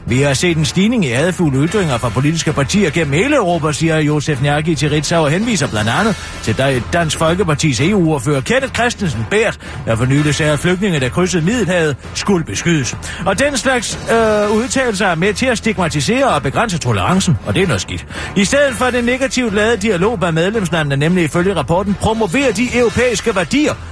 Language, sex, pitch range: Danish, male, 145-210 Hz